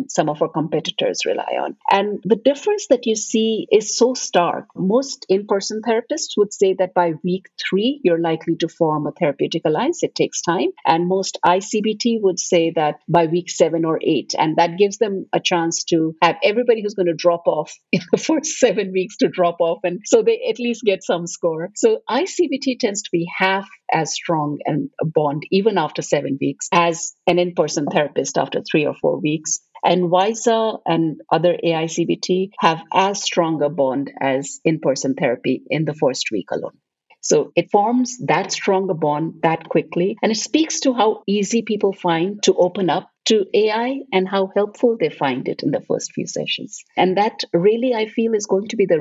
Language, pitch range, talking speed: English, 165-220 Hz, 195 wpm